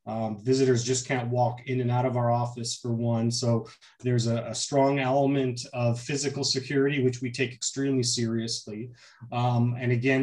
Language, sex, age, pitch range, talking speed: English, male, 30-49, 120-135 Hz, 175 wpm